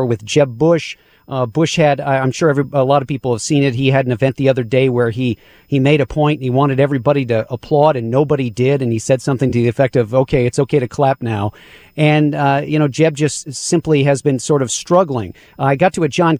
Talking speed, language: 250 wpm, English